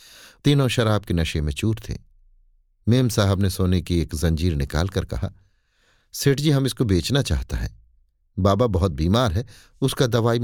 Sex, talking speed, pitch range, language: male, 165 wpm, 85-120 Hz, Hindi